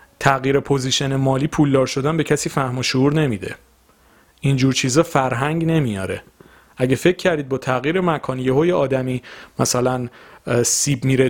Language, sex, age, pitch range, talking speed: Persian, male, 30-49, 115-140 Hz, 145 wpm